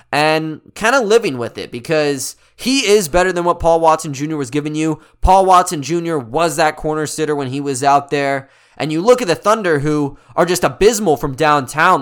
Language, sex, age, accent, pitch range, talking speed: English, male, 20-39, American, 155-210 Hz, 210 wpm